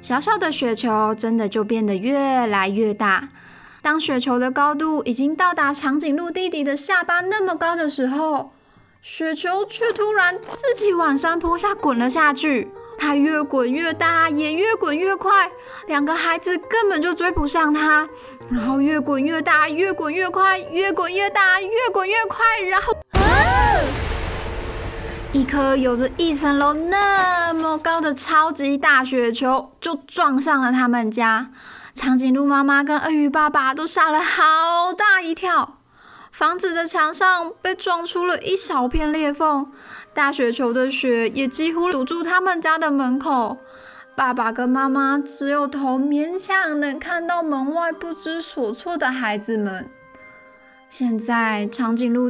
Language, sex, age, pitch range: Chinese, female, 20-39, 255-345 Hz